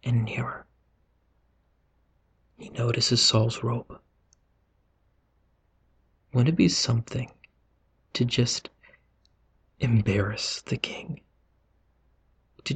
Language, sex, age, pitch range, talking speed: English, male, 40-59, 90-120 Hz, 75 wpm